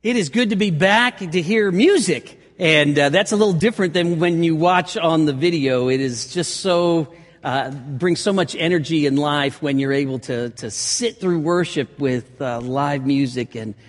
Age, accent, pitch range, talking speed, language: 50-69, American, 140-180 Hz, 200 wpm, English